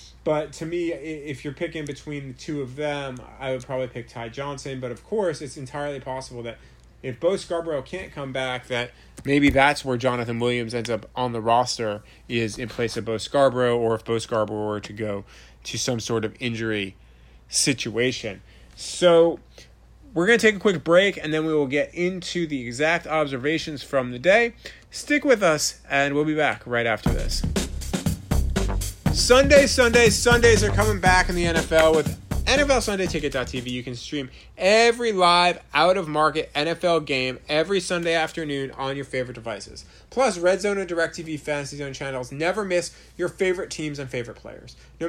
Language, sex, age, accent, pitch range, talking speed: English, male, 30-49, American, 125-175 Hz, 175 wpm